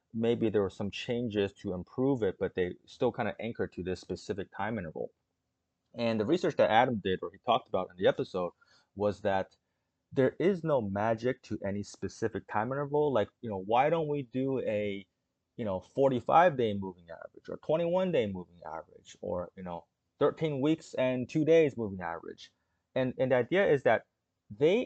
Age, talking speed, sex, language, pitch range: 20-39, 190 wpm, male, English, 95-135 Hz